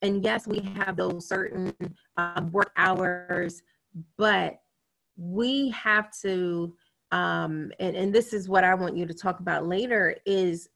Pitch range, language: 180-235 Hz, English